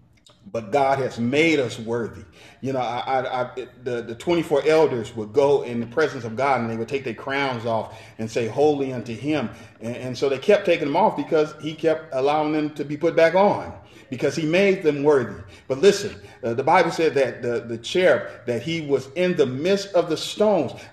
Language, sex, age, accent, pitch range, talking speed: English, male, 40-59, American, 140-200 Hz, 220 wpm